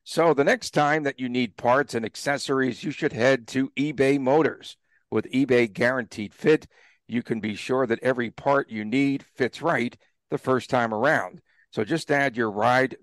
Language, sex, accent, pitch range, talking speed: English, male, American, 115-145 Hz, 185 wpm